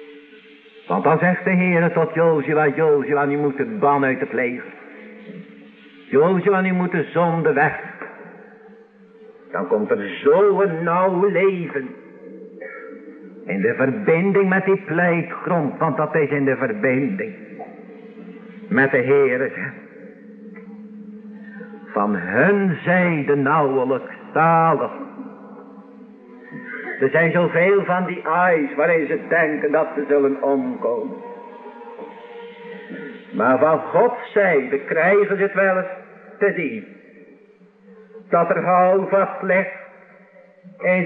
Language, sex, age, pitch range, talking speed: Dutch, male, 60-79, 170-225 Hz, 115 wpm